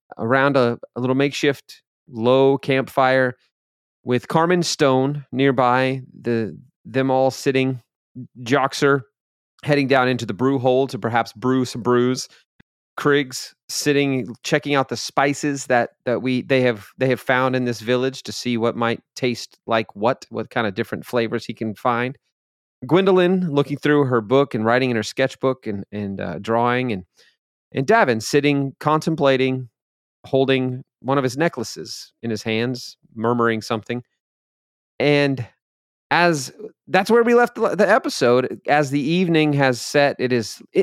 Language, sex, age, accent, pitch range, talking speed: English, male, 30-49, American, 120-140 Hz, 150 wpm